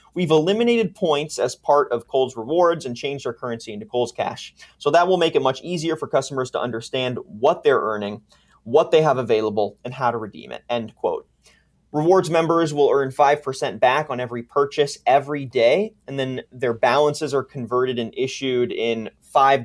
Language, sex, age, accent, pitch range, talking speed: English, male, 30-49, American, 120-150 Hz, 190 wpm